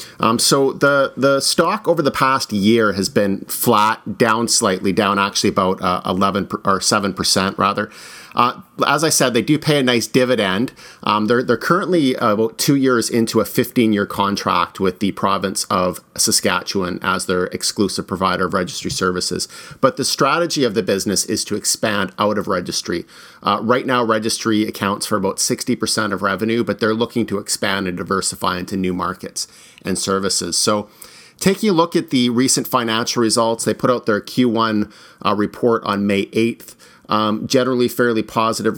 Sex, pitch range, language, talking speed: male, 100-120 Hz, English, 175 wpm